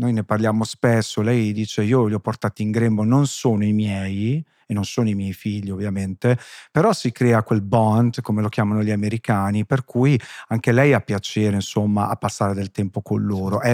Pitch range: 100-120 Hz